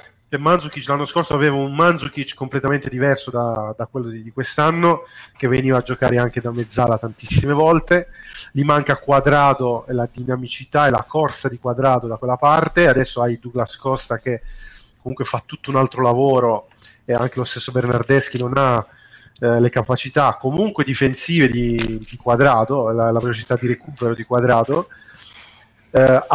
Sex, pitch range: male, 125-150 Hz